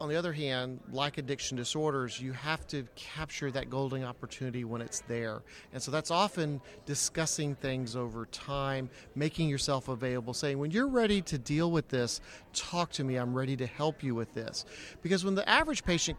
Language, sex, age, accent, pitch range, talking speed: English, male, 40-59, American, 130-160 Hz, 190 wpm